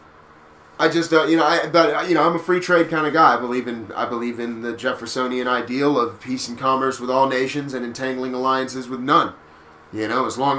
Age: 30-49